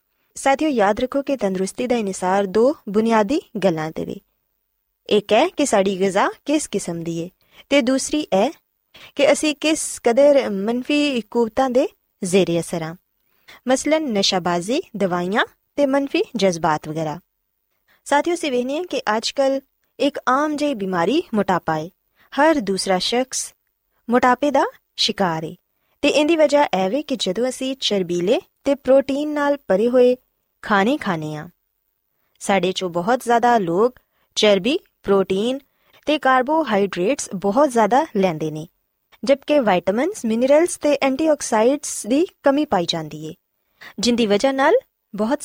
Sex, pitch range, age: female, 190-280 Hz, 20-39